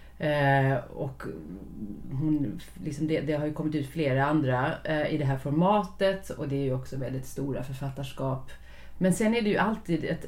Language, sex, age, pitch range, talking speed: Swedish, female, 30-49, 135-175 Hz, 165 wpm